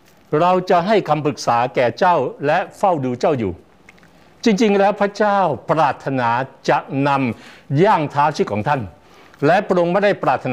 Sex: male